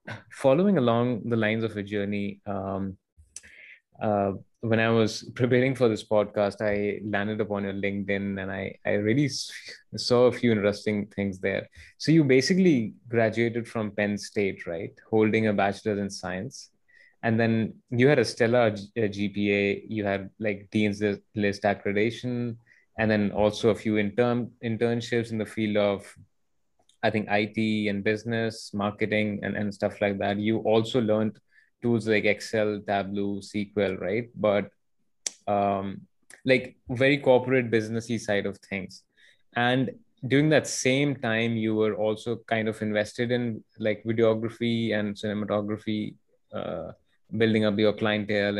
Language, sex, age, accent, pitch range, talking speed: English, male, 20-39, Indian, 100-120 Hz, 145 wpm